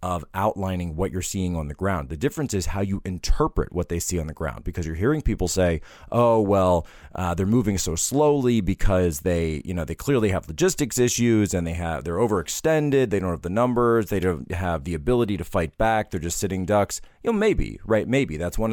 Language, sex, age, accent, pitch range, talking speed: English, male, 30-49, American, 85-105 Hz, 225 wpm